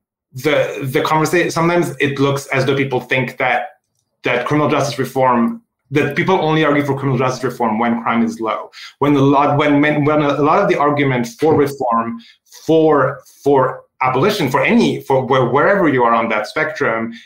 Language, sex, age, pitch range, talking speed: English, male, 30-49, 120-140 Hz, 180 wpm